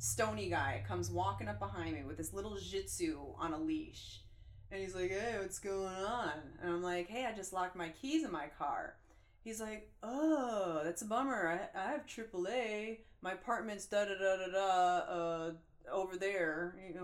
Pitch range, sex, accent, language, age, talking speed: 175-245 Hz, female, American, English, 20-39, 190 wpm